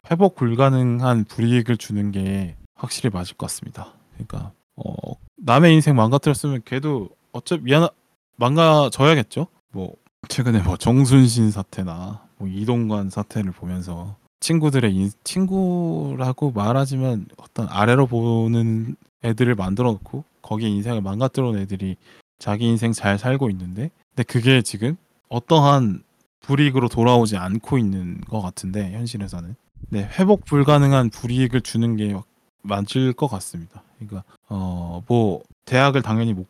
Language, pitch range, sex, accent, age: Korean, 100-130 Hz, male, native, 20-39